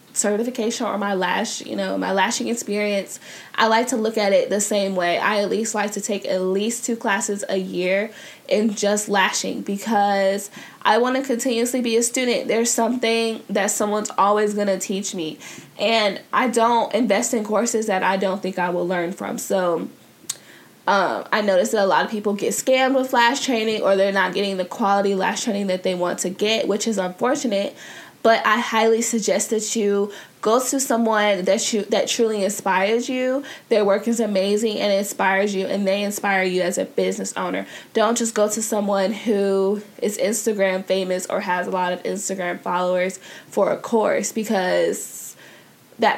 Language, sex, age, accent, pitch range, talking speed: English, female, 10-29, American, 190-225 Hz, 190 wpm